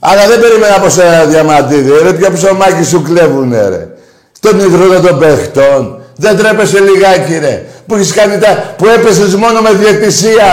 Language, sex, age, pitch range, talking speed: Greek, male, 60-79, 185-255 Hz, 155 wpm